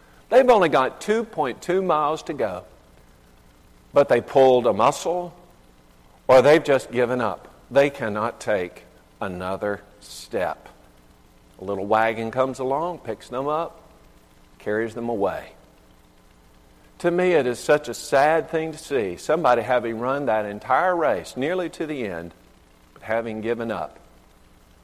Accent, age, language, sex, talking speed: American, 50-69, English, male, 140 wpm